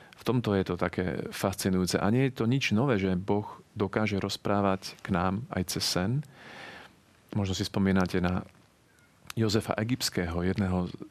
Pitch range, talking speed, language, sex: 95-110 Hz, 150 wpm, Slovak, male